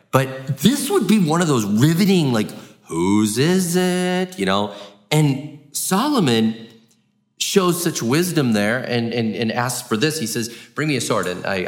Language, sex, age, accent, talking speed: English, male, 30-49, American, 175 wpm